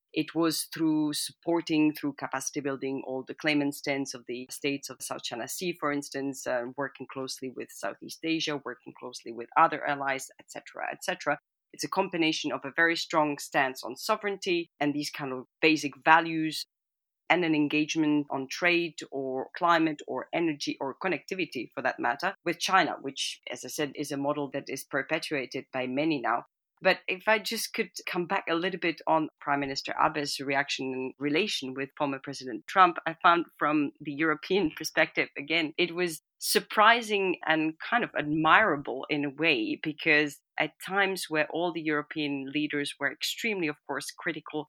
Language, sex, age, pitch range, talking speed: English, female, 30-49, 140-165 Hz, 175 wpm